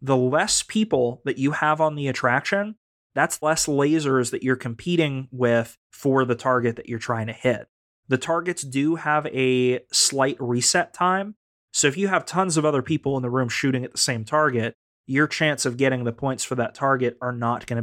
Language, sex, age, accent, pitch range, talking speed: English, male, 30-49, American, 120-150 Hz, 200 wpm